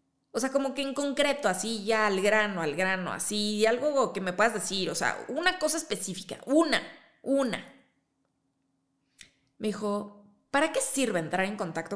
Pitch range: 175-225 Hz